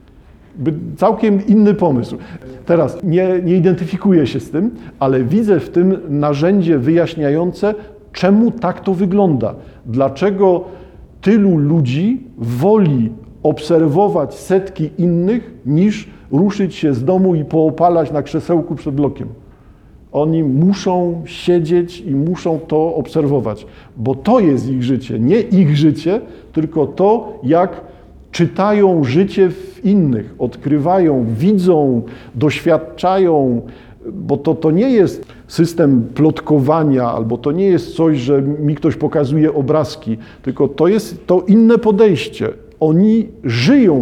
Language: Polish